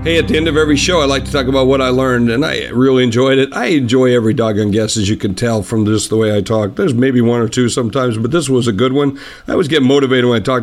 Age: 50-69